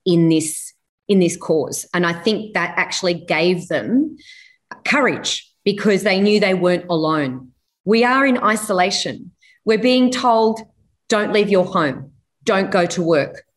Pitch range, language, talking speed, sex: 185-235 Hz, English, 150 wpm, female